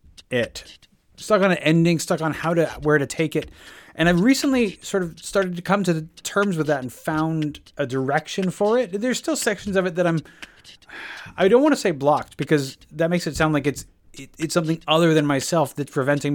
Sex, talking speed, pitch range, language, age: male, 215 wpm, 130-165 Hz, English, 30-49